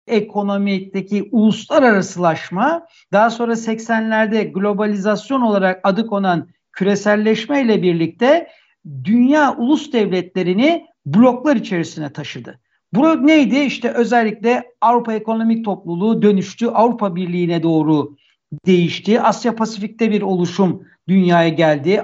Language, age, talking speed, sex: Turkish, 60-79, 95 wpm, male